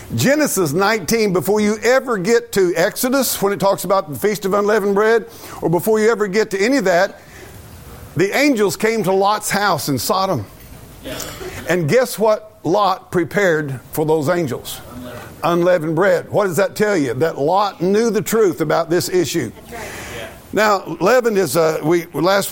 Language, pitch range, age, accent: English, 170-220 Hz, 50-69, American